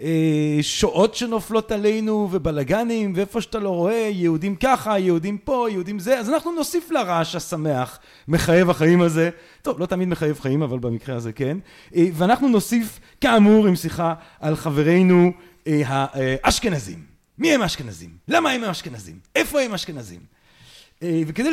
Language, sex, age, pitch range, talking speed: Hebrew, male, 40-59, 155-220 Hz, 135 wpm